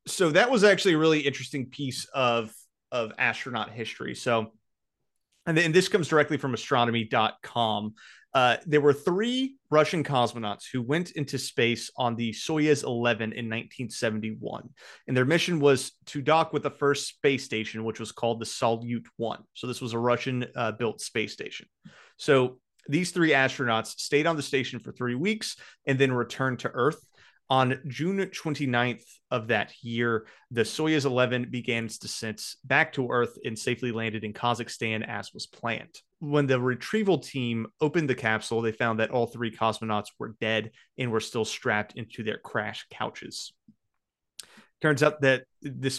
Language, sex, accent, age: English, male, American, 30-49